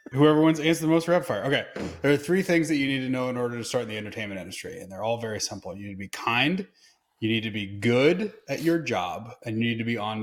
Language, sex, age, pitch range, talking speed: English, male, 20-39, 115-145 Hz, 285 wpm